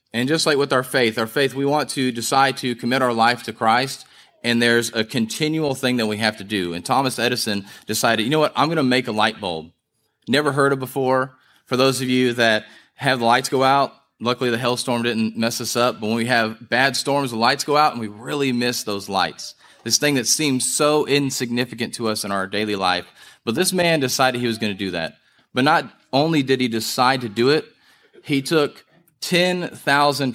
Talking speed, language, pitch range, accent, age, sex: 225 wpm, English, 115-140 Hz, American, 30-49, male